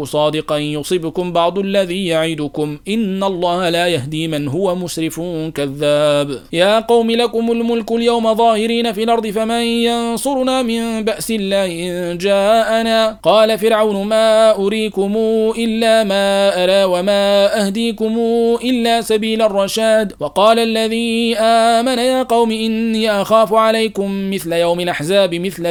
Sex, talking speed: male, 120 wpm